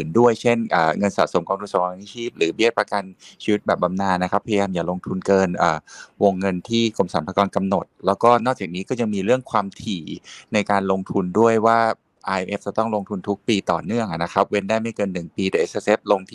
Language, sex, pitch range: Thai, male, 95-115 Hz